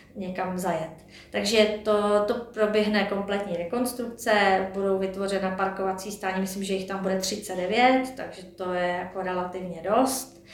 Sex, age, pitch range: female, 30-49, 195-220 Hz